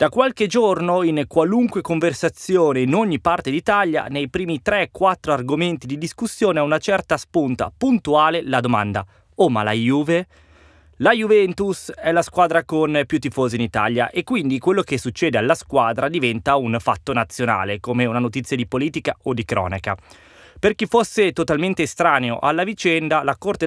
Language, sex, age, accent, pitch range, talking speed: Italian, male, 20-39, native, 125-175 Hz, 165 wpm